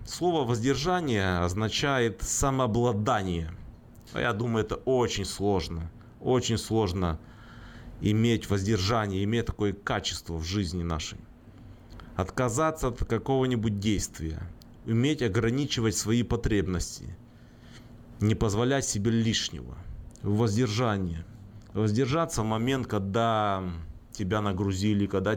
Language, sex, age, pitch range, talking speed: Russian, male, 30-49, 100-120 Hz, 90 wpm